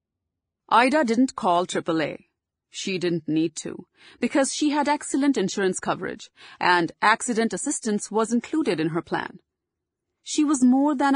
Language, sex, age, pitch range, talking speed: English, female, 30-49, 170-255 Hz, 140 wpm